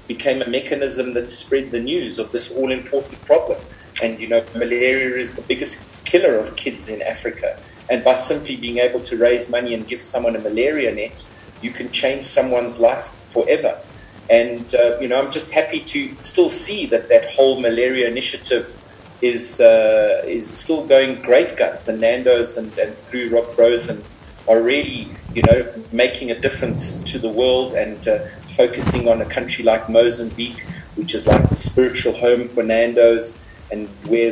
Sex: male